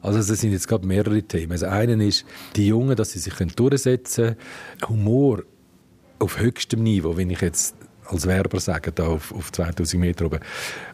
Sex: male